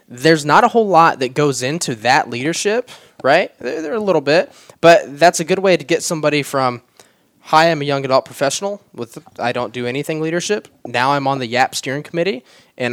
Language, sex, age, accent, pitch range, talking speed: English, male, 10-29, American, 120-160 Hz, 215 wpm